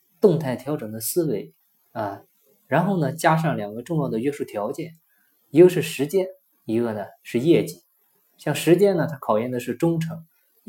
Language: Chinese